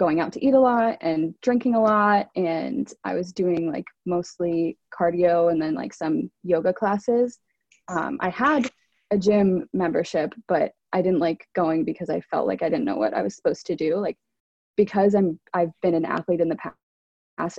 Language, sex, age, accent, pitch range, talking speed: English, female, 20-39, American, 165-205 Hz, 195 wpm